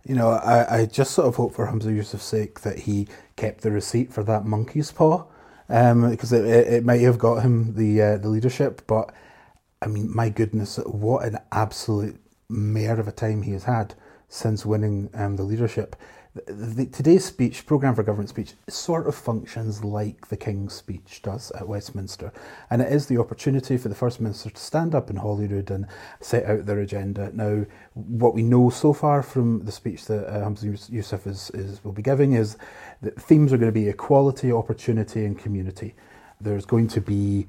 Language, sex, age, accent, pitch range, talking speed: English, male, 30-49, British, 105-120 Hz, 200 wpm